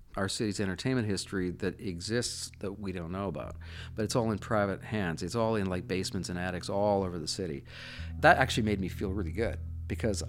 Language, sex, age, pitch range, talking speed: English, male, 40-59, 90-115 Hz, 210 wpm